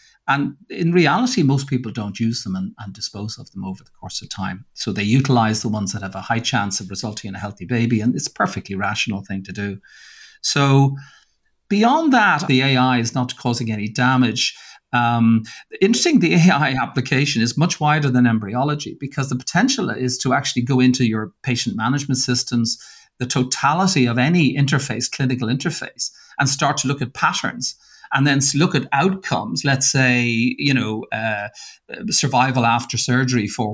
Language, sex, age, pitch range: English, male, 40-59, 115-145 Hz